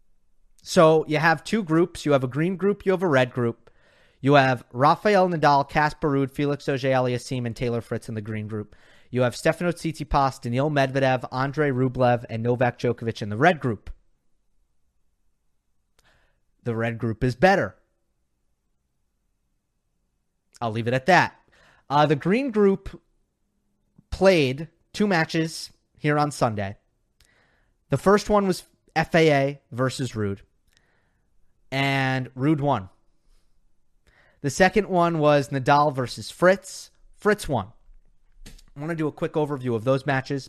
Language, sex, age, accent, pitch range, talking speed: English, male, 30-49, American, 115-160 Hz, 140 wpm